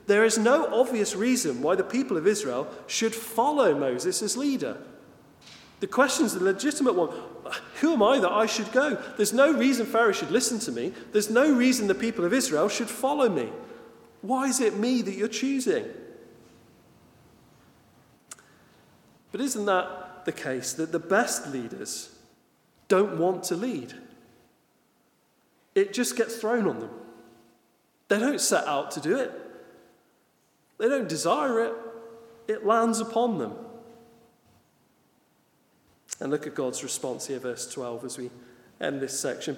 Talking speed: 150 wpm